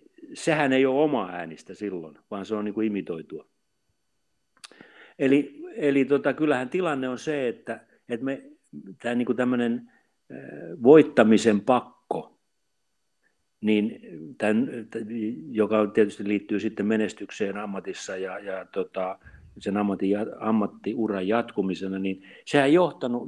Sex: male